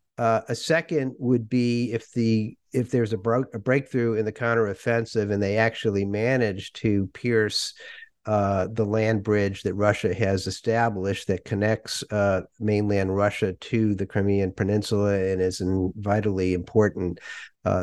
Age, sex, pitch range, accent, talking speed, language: 50-69, male, 100-125 Hz, American, 150 wpm, English